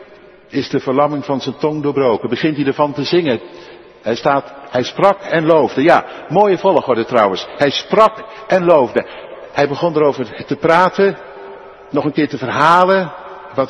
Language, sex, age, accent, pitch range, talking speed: Dutch, male, 60-79, Dutch, 145-200 Hz, 160 wpm